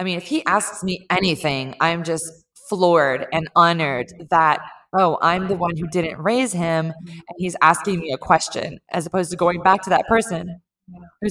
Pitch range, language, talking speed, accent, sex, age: 165-195 Hz, English, 190 wpm, American, female, 20-39